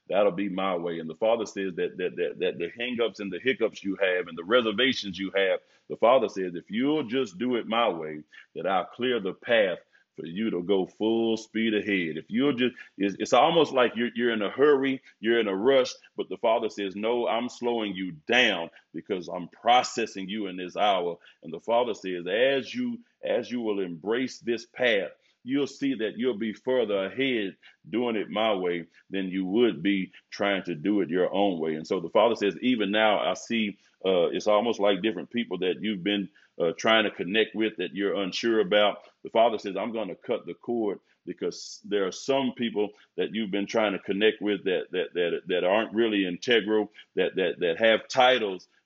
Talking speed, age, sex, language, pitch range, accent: 210 wpm, 40-59, male, English, 95-120 Hz, American